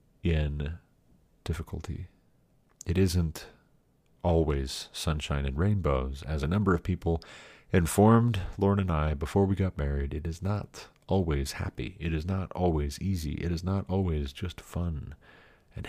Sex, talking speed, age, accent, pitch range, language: male, 145 wpm, 40-59, American, 75-95 Hz, English